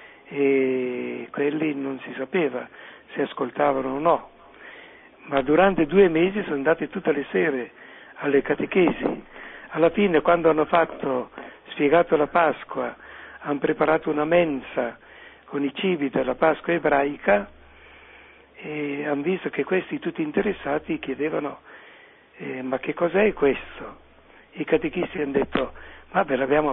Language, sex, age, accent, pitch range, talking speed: Italian, male, 60-79, native, 140-185 Hz, 130 wpm